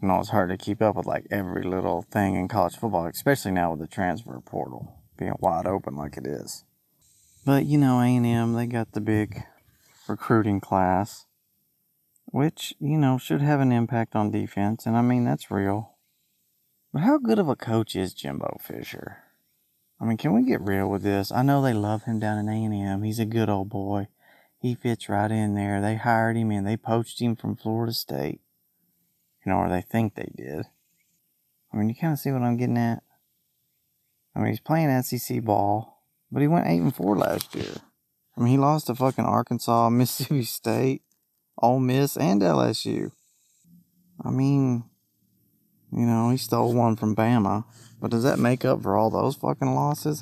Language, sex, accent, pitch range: English, male, American, 100-125 Hz